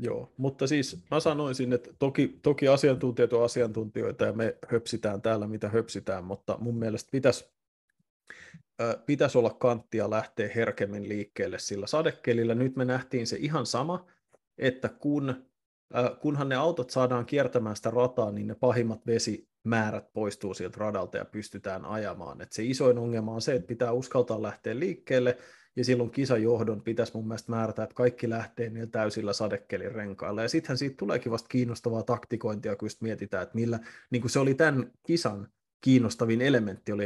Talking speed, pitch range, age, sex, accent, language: 160 wpm, 110-125 Hz, 30-49, male, native, Finnish